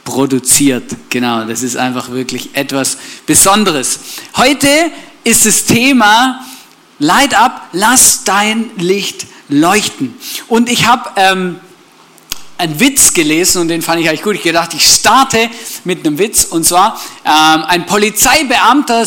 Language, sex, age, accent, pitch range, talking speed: German, male, 50-69, German, 165-270 Hz, 135 wpm